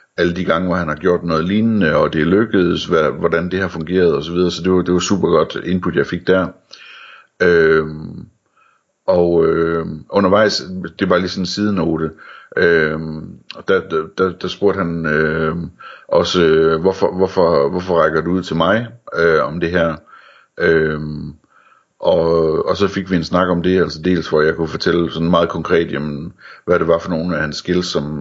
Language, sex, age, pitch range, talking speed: Danish, male, 60-79, 80-90 Hz, 190 wpm